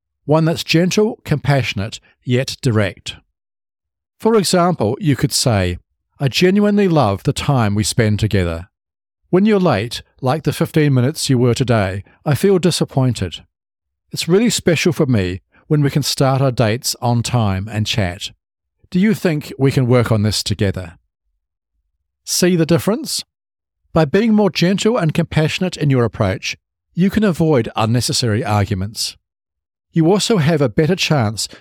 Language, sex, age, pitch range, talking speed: English, male, 50-69, 100-160 Hz, 150 wpm